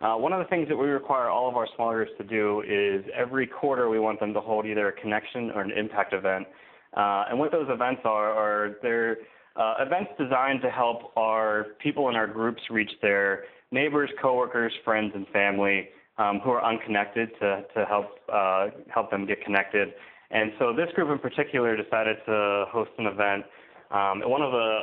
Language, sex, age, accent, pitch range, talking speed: English, male, 20-39, American, 100-115 Hz, 200 wpm